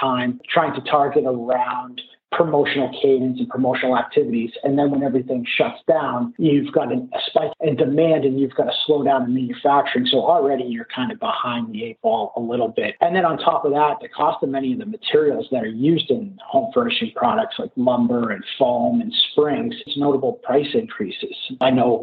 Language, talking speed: English, 205 wpm